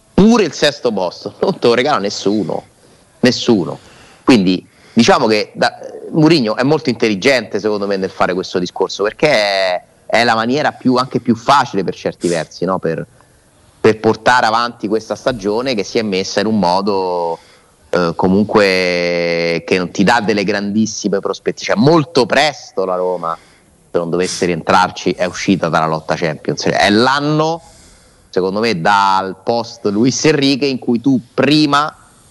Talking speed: 160 wpm